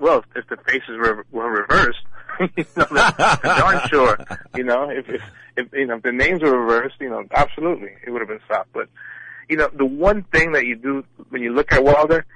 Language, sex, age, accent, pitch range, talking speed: English, male, 30-49, American, 115-135 Hz, 190 wpm